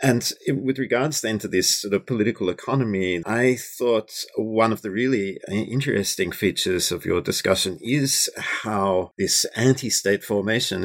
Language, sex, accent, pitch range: English, male, Australian, 95-115 Hz